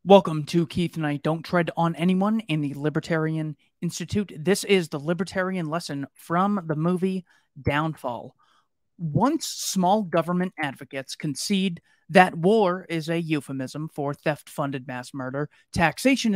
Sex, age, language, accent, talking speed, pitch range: male, 30-49, English, American, 135 wpm, 150-190 Hz